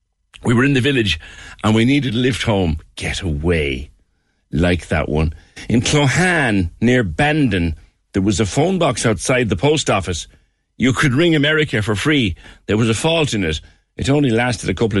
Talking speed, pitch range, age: 185 wpm, 90-135 Hz, 50-69